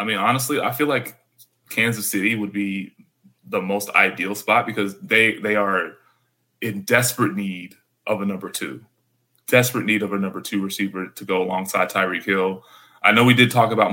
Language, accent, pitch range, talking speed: English, American, 95-110 Hz, 185 wpm